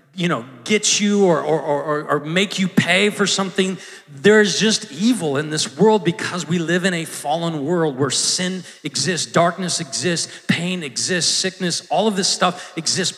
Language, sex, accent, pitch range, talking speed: English, male, American, 180-245 Hz, 180 wpm